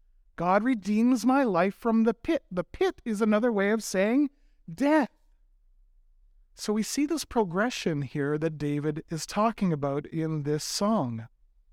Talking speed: 150 wpm